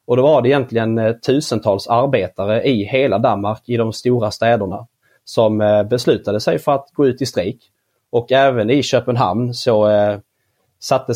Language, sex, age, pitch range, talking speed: Swedish, male, 30-49, 105-120 Hz, 160 wpm